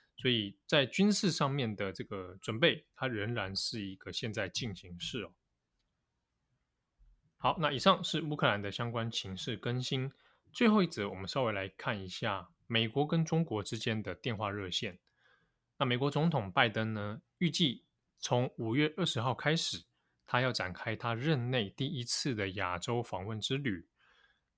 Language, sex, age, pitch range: Chinese, male, 20-39, 105-145 Hz